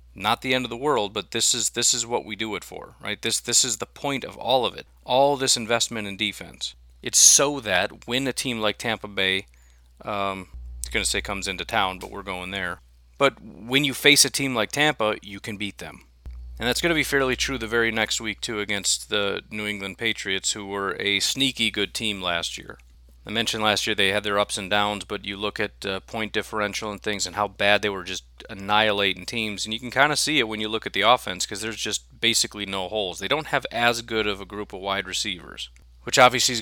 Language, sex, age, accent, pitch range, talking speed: English, male, 40-59, American, 95-115 Hz, 245 wpm